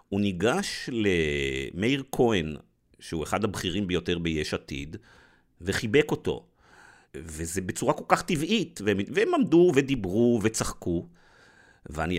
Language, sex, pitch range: Hebrew, male, 85-125 Hz